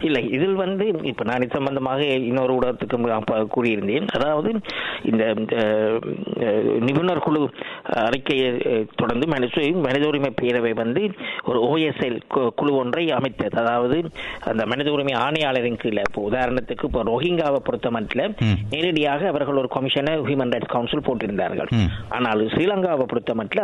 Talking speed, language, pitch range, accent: 115 wpm, Tamil, 120-175 Hz, native